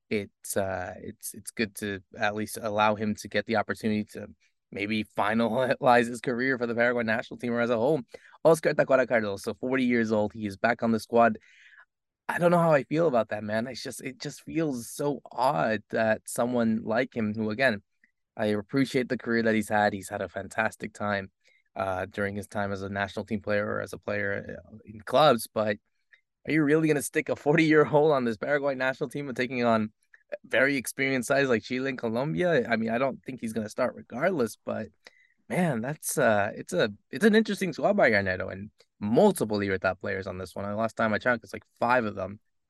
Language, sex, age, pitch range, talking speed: English, male, 20-39, 105-130 Hz, 215 wpm